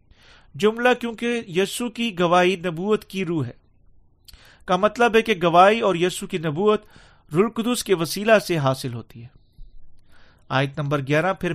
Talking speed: 150 wpm